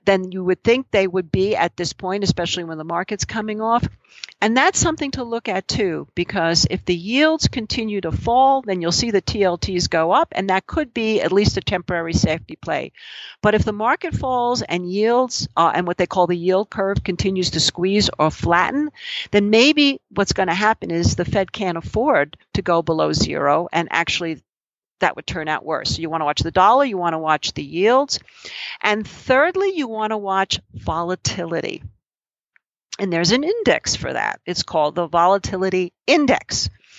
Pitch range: 180-245 Hz